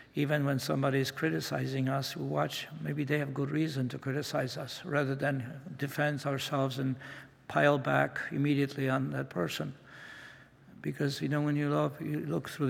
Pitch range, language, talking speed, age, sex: 130-145 Hz, English, 170 wpm, 60-79, male